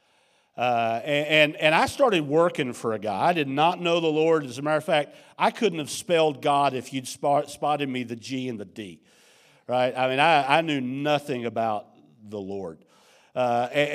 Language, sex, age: English, male, 50-69